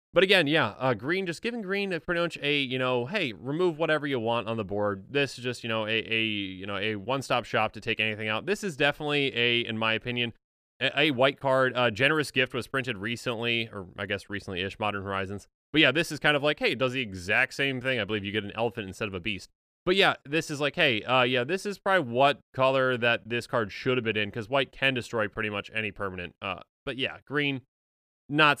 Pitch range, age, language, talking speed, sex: 110-150 Hz, 20-39, English, 250 wpm, male